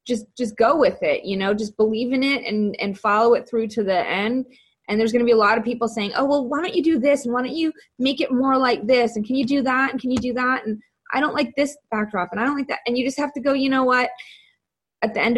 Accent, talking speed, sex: American, 305 wpm, female